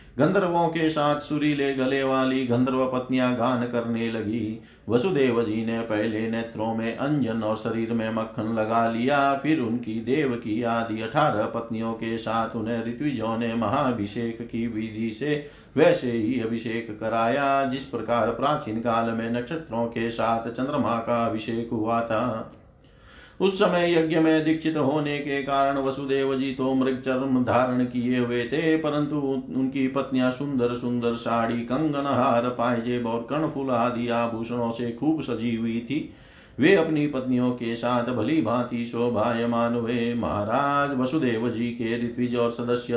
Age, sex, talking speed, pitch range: 50-69, male, 150 wpm, 115-135 Hz